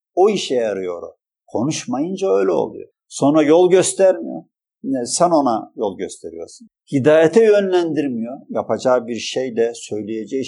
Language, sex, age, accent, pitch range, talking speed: Turkish, male, 50-69, native, 145-235 Hz, 110 wpm